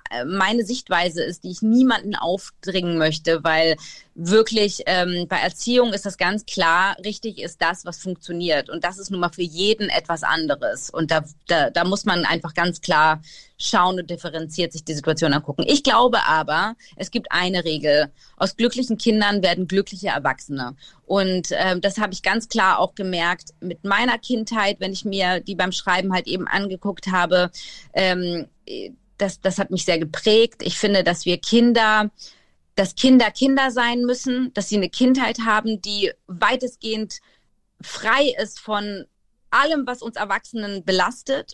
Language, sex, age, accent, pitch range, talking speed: German, female, 30-49, German, 180-230 Hz, 165 wpm